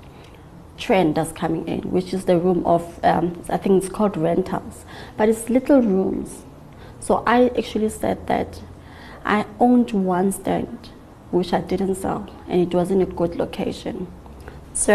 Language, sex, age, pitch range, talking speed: English, female, 20-39, 170-195 Hz, 160 wpm